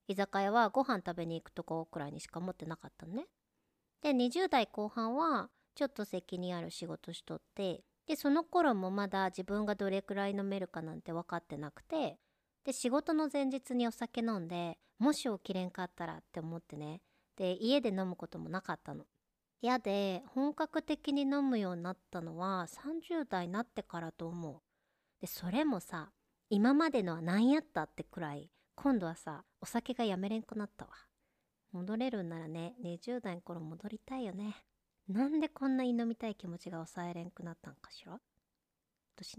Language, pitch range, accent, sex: Japanese, 170-245 Hz, native, male